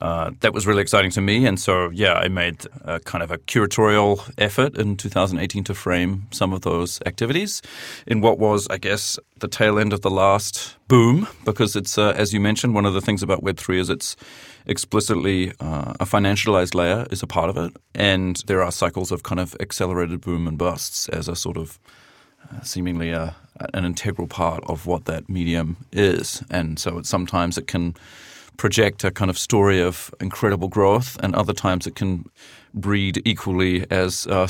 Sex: male